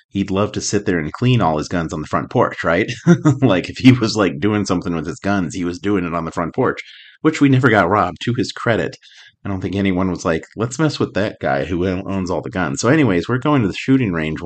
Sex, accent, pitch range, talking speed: male, American, 85-120 Hz, 270 wpm